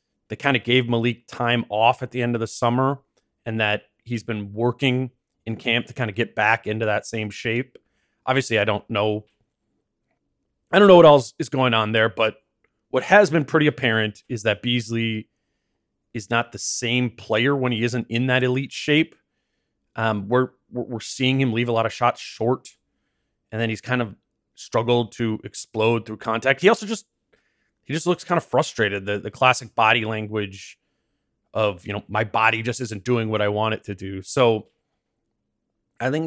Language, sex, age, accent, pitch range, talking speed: English, male, 30-49, American, 110-130 Hz, 190 wpm